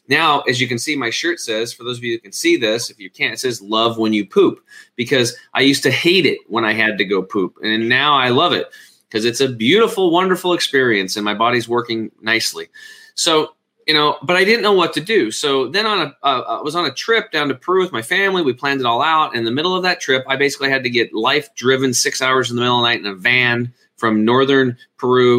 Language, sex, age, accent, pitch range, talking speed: English, male, 30-49, American, 110-135 Hz, 265 wpm